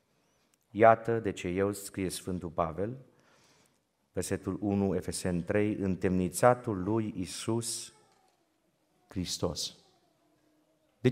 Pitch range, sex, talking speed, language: 90-115 Hz, male, 85 wpm, Romanian